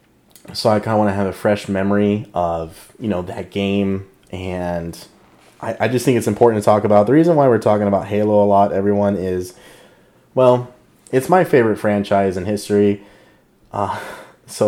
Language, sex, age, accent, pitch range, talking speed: English, male, 30-49, American, 95-105 Hz, 185 wpm